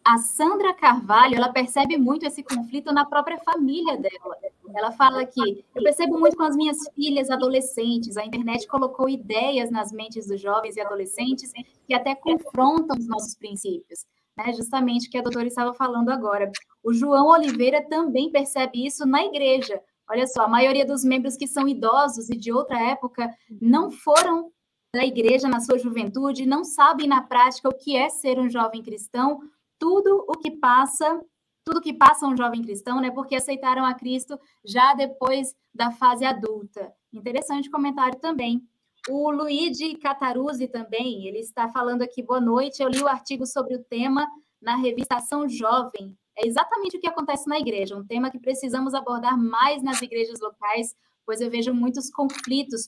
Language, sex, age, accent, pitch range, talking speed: Portuguese, female, 10-29, Brazilian, 235-280 Hz, 170 wpm